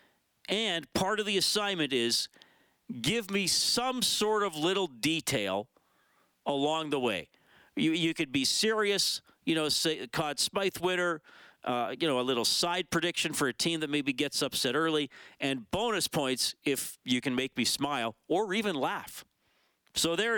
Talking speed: 160 wpm